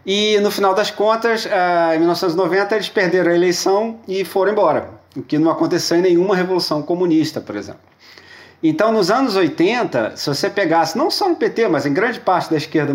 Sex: male